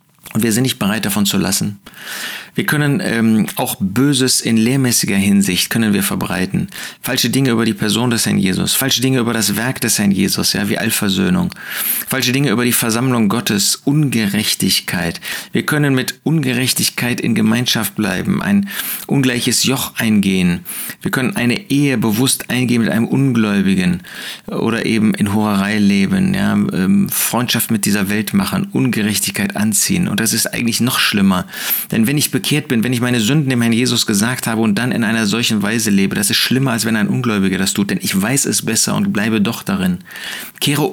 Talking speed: 185 wpm